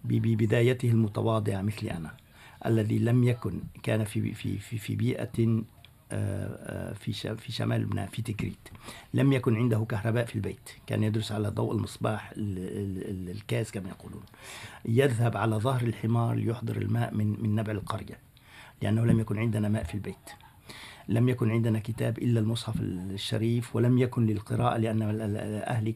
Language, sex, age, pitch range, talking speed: Arabic, male, 50-69, 110-125 Hz, 140 wpm